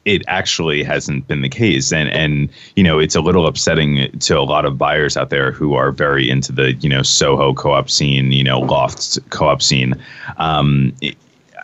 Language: English